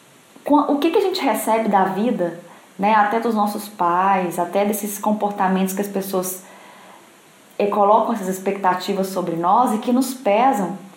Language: Portuguese